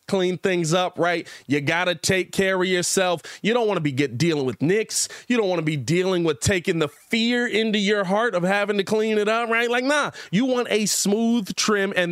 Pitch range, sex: 170-215 Hz, male